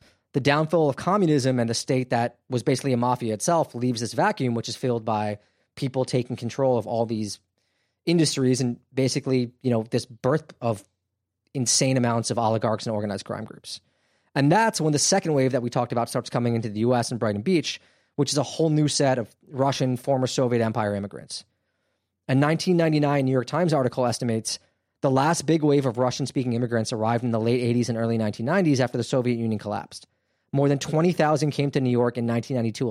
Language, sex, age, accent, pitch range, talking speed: English, male, 20-39, American, 115-145 Hz, 200 wpm